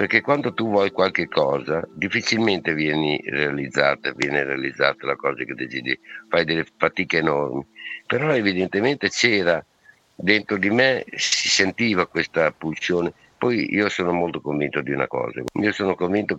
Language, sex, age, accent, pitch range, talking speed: Italian, male, 60-79, native, 80-105 Hz, 145 wpm